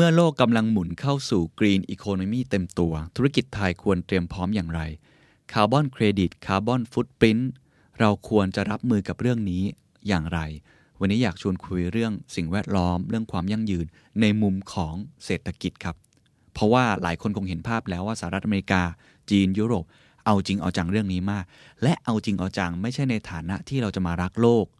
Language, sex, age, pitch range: Thai, male, 20-39, 90-120 Hz